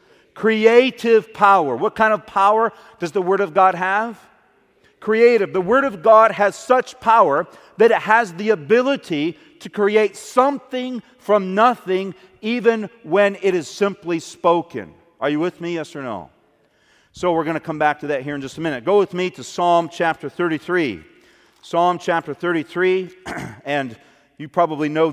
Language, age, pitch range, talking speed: English, 40-59, 160-220 Hz, 165 wpm